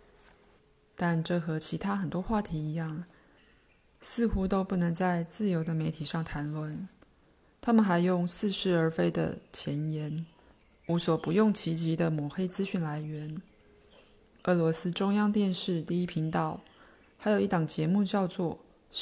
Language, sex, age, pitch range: Chinese, female, 20-39, 160-195 Hz